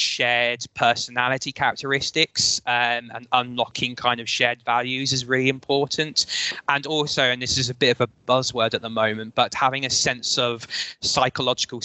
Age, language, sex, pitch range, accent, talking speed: 20-39, English, male, 115-130 Hz, British, 160 wpm